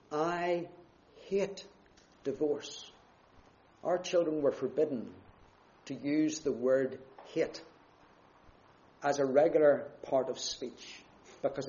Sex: male